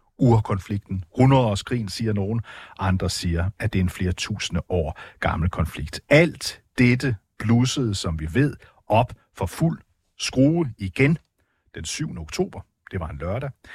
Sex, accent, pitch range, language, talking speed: male, native, 90-125 Hz, Danish, 145 wpm